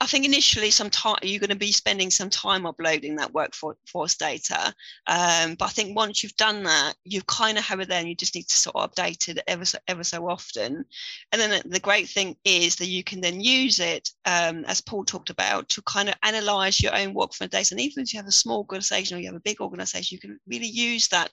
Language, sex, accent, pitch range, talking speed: English, female, British, 175-215 Hz, 250 wpm